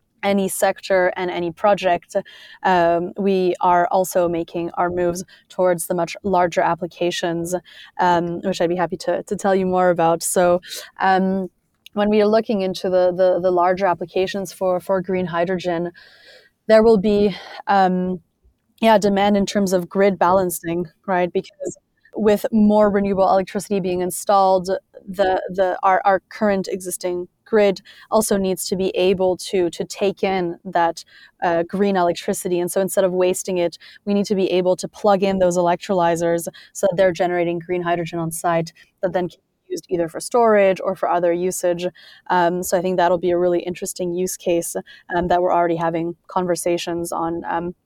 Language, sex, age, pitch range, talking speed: English, female, 20-39, 175-195 Hz, 175 wpm